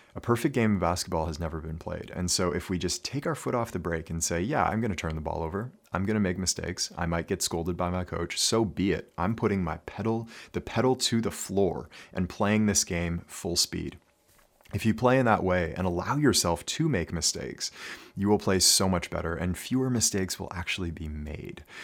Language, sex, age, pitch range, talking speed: English, male, 30-49, 85-100 Hz, 230 wpm